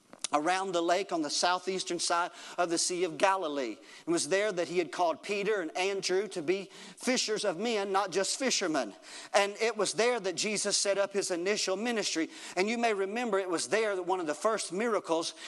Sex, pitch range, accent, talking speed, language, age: male, 190-245 Hz, American, 210 wpm, English, 40-59